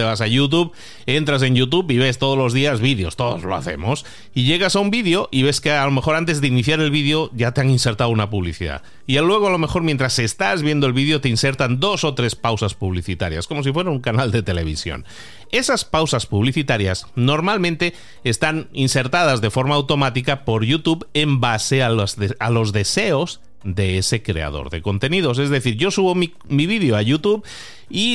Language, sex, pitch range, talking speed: Spanish, male, 110-150 Hz, 205 wpm